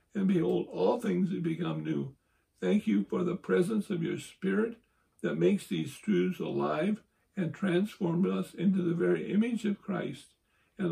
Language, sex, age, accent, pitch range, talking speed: English, male, 60-79, American, 160-190 Hz, 165 wpm